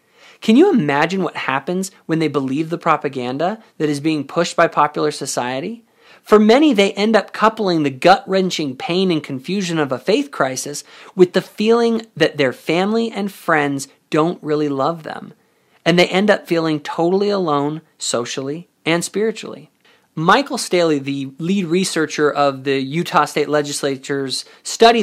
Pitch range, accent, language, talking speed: 145-195 Hz, American, English, 155 wpm